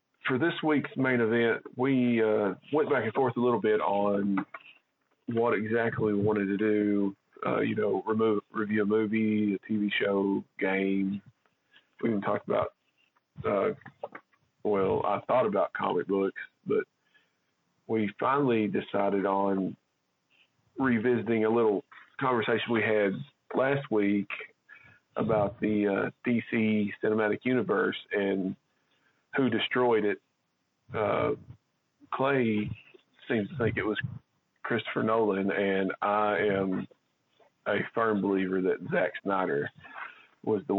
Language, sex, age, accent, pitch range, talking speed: English, male, 40-59, American, 100-115 Hz, 125 wpm